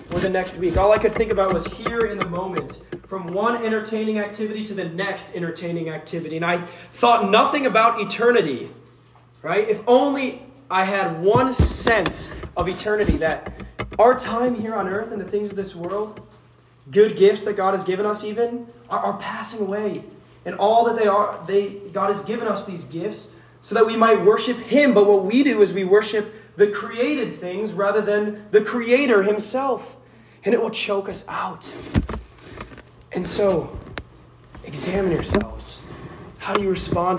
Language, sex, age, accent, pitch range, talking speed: English, male, 20-39, American, 170-215 Hz, 175 wpm